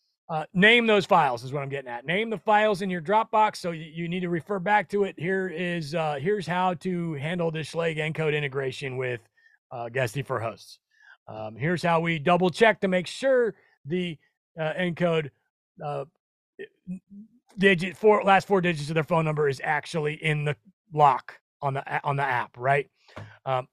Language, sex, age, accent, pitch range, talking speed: English, male, 30-49, American, 160-220 Hz, 185 wpm